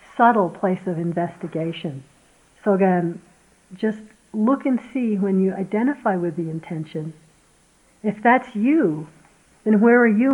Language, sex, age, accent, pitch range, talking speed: English, female, 60-79, American, 180-220 Hz, 135 wpm